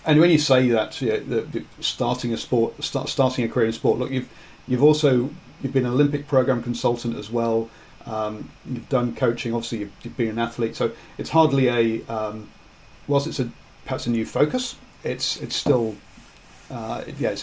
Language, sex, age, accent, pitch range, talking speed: English, male, 40-59, British, 115-135 Hz, 195 wpm